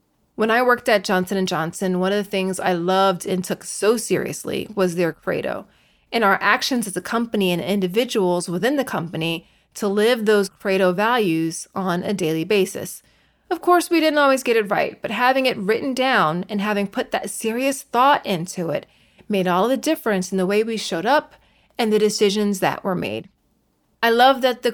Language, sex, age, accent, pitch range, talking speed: English, female, 30-49, American, 185-230 Hz, 195 wpm